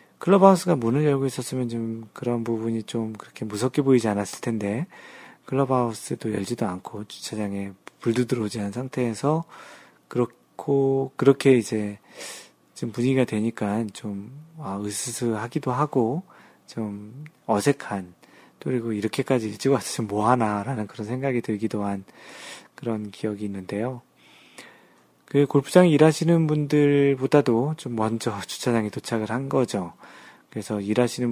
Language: Korean